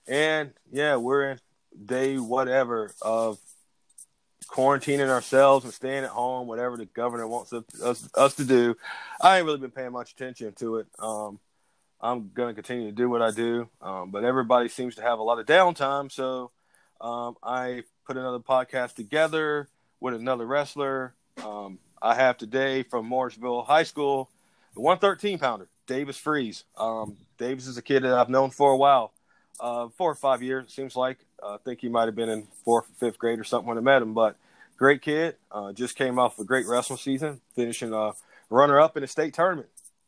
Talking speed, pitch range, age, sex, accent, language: 190 wpm, 115-135 Hz, 30-49, male, American, English